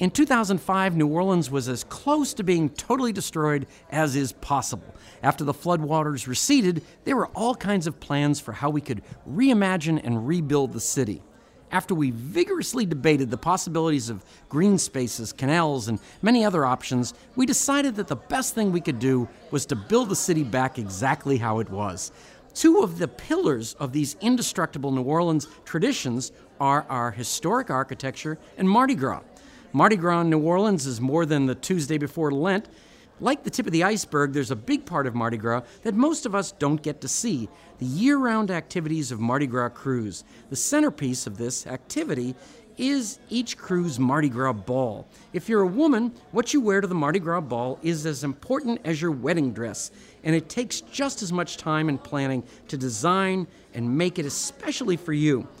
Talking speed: 185 wpm